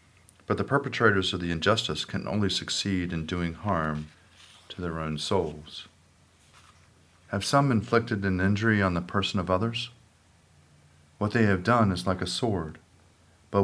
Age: 40-59